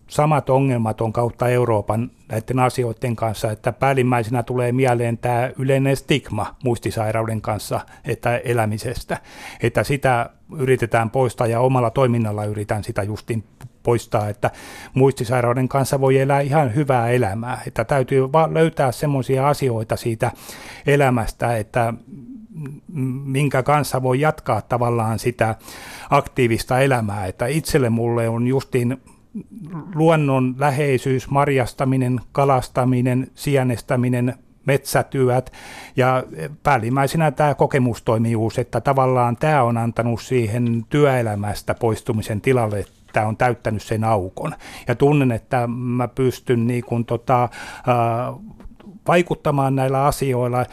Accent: native